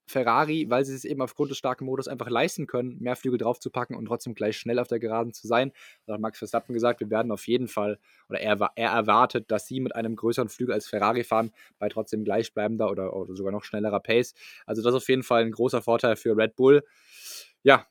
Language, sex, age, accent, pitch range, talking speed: German, male, 20-39, German, 110-130 Hz, 230 wpm